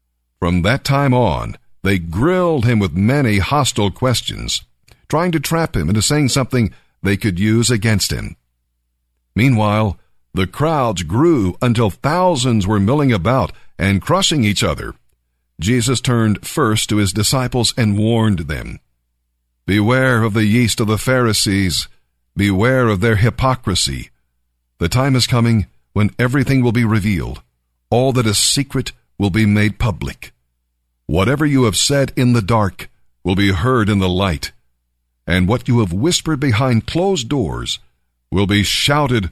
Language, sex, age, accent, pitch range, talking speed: English, male, 50-69, American, 80-125 Hz, 150 wpm